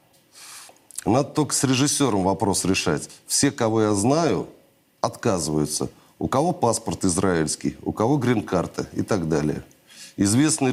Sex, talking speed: male, 125 wpm